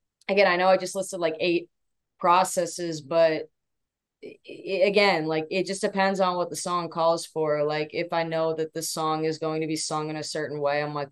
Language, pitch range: English, 155-185 Hz